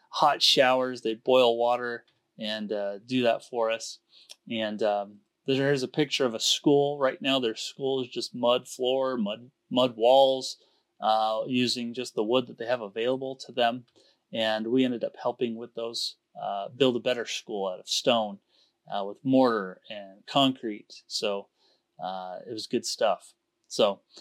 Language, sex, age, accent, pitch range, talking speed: English, male, 30-49, American, 115-135 Hz, 170 wpm